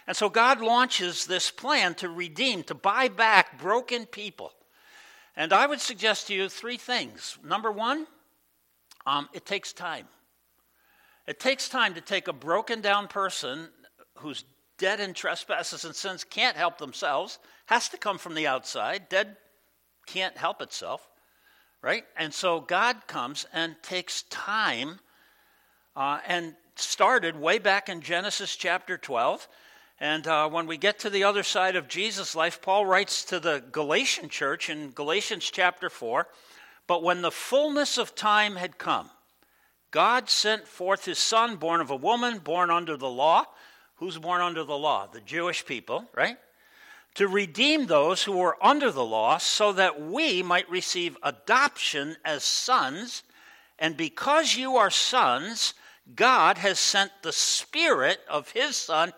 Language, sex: English, male